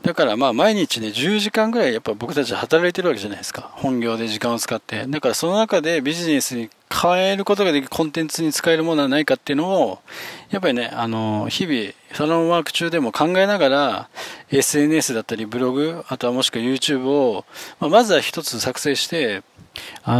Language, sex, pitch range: Japanese, male, 115-165 Hz